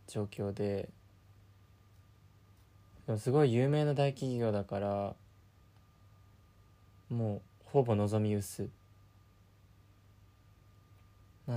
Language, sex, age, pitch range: Japanese, male, 20-39, 100-115 Hz